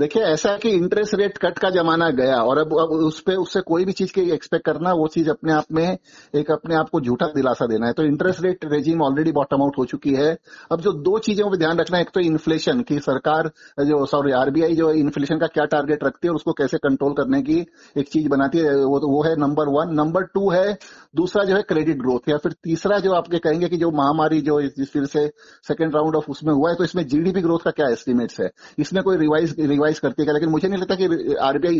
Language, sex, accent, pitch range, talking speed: Hindi, male, native, 145-175 Hz, 240 wpm